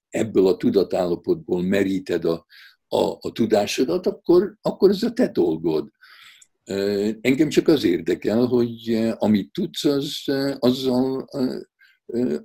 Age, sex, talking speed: 60-79, male, 130 wpm